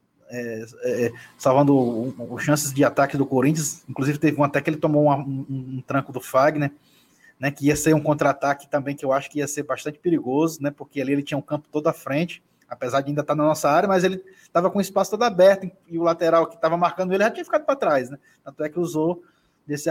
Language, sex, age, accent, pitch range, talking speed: Portuguese, male, 20-39, Brazilian, 140-190 Hz, 245 wpm